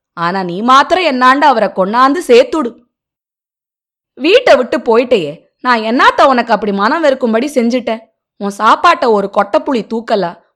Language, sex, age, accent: Tamil, female, 20-39, native